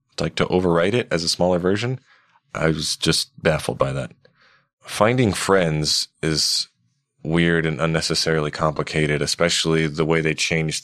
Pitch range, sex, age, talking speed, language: 80-90 Hz, male, 20-39, 145 wpm, English